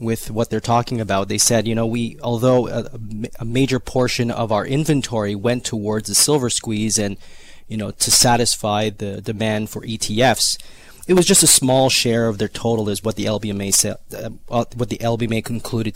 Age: 30-49